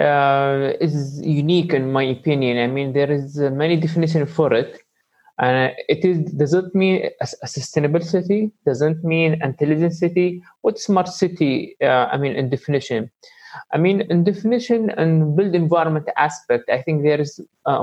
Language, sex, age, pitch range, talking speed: English, male, 20-39, 140-180 Hz, 170 wpm